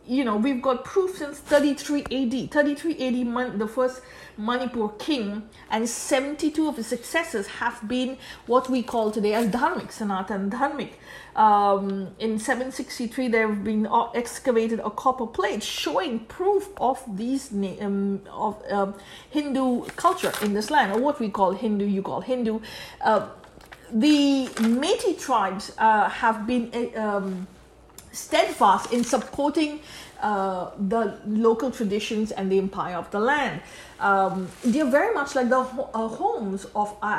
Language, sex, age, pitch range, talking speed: English, female, 50-69, 210-265 Hz, 145 wpm